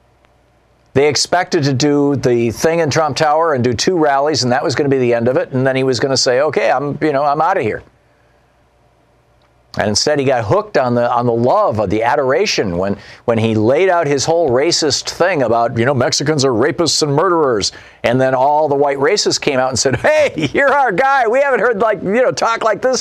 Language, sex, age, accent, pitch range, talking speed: English, male, 50-69, American, 115-155 Hz, 235 wpm